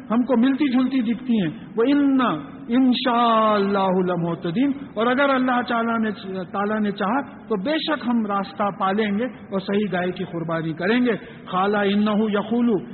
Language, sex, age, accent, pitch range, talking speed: English, male, 50-69, Indian, 200-260 Hz, 155 wpm